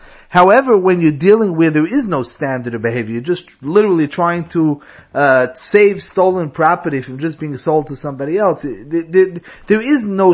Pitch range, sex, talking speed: 145-210 Hz, male, 185 wpm